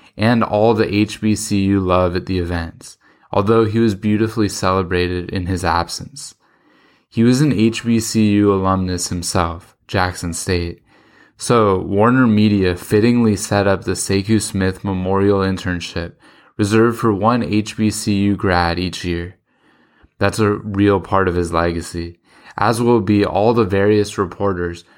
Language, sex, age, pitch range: English, male, 10-29, 90-105 Hz